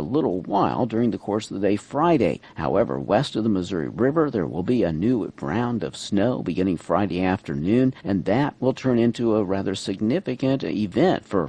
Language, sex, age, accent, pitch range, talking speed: English, male, 50-69, American, 85-115 Hz, 195 wpm